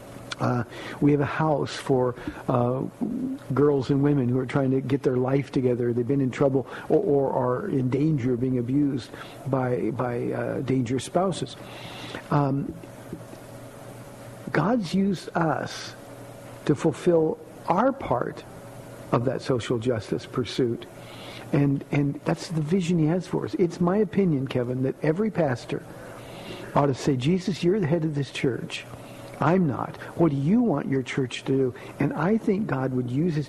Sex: male